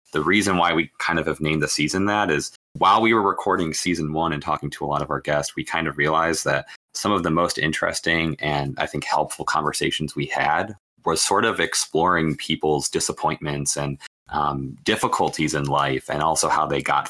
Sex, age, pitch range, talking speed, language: male, 20-39, 75-90 Hz, 205 wpm, English